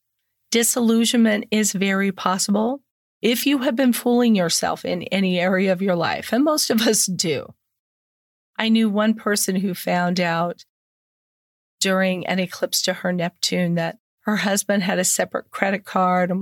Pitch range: 180-235 Hz